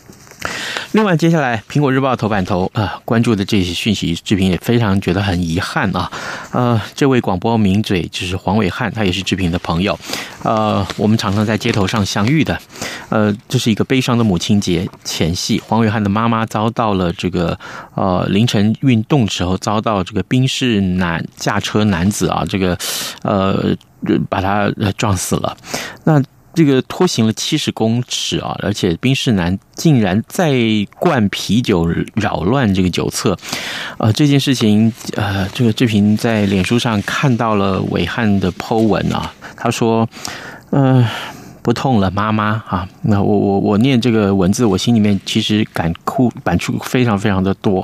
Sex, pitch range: male, 100-120 Hz